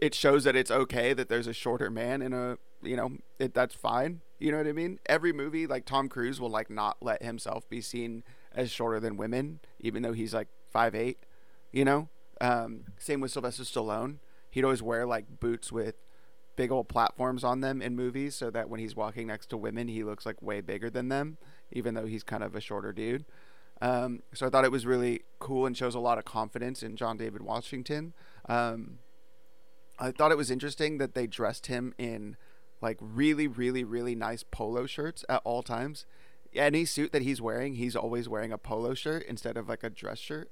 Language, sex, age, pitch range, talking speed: English, male, 30-49, 115-135 Hz, 210 wpm